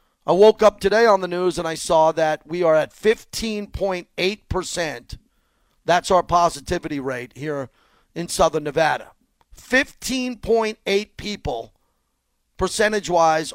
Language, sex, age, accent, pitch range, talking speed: English, male, 40-59, American, 155-195 Hz, 115 wpm